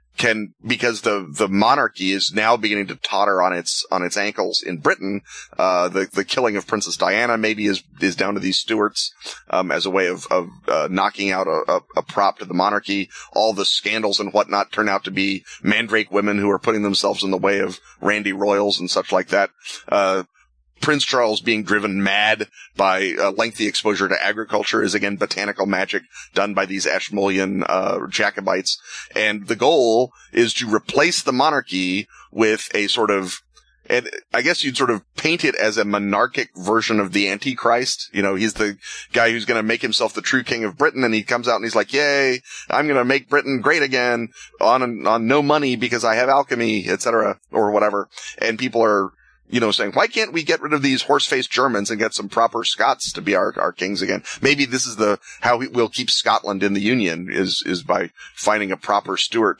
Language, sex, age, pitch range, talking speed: English, male, 30-49, 100-120 Hz, 210 wpm